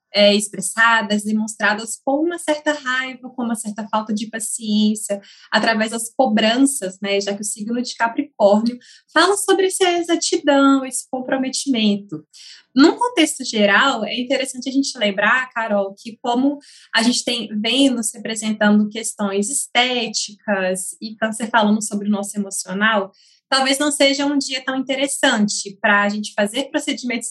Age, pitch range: 20-39, 210-270 Hz